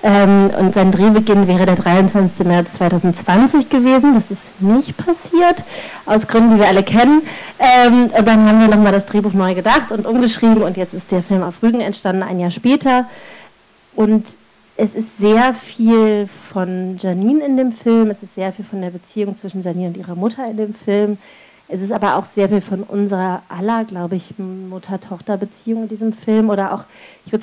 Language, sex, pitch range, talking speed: German, female, 190-220 Hz, 185 wpm